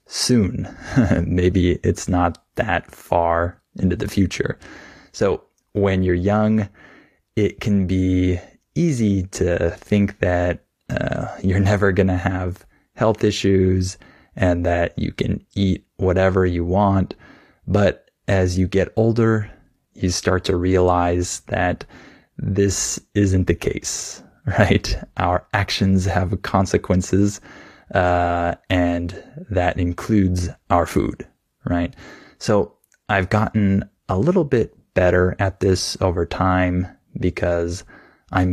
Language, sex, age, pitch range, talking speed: English, male, 20-39, 90-100 Hz, 115 wpm